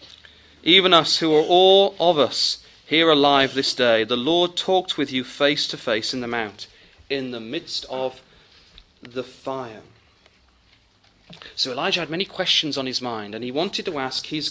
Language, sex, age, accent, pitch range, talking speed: English, male, 40-59, British, 120-180 Hz, 175 wpm